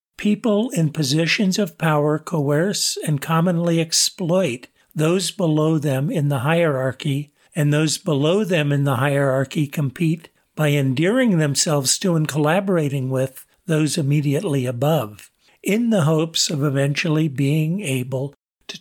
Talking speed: 130 wpm